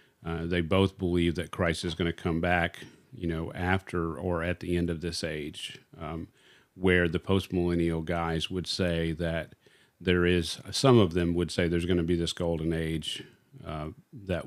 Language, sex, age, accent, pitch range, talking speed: English, male, 40-59, American, 85-95 Hz, 185 wpm